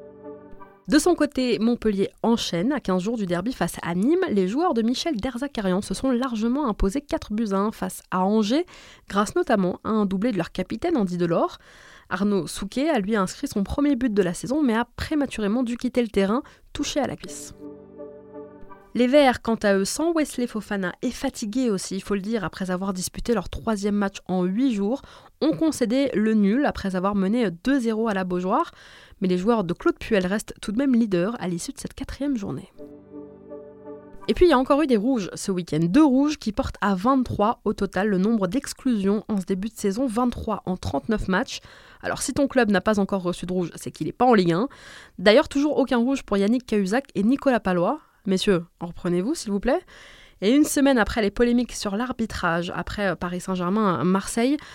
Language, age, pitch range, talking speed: French, 20-39, 190-255 Hz, 205 wpm